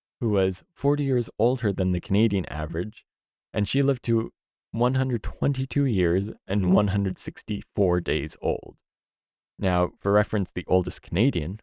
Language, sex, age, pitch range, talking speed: English, male, 20-39, 90-120 Hz, 130 wpm